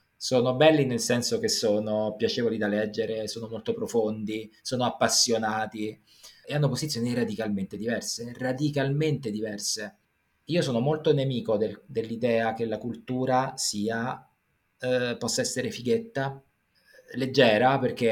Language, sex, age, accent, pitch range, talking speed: Italian, male, 20-39, native, 120-135 Hz, 120 wpm